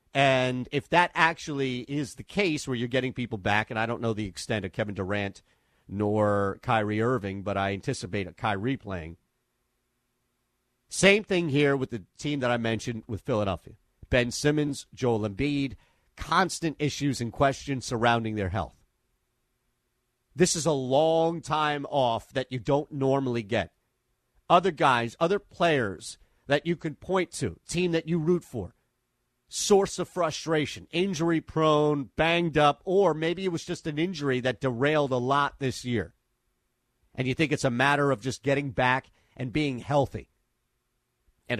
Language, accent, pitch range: English, American, 115-160 Hz